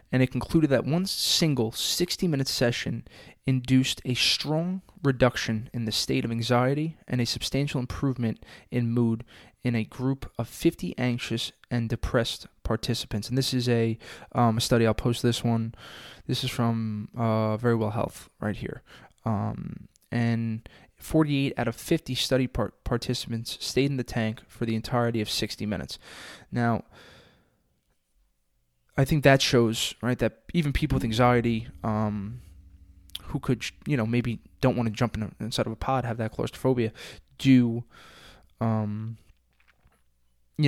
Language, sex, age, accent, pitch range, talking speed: English, male, 20-39, American, 110-130 Hz, 150 wpm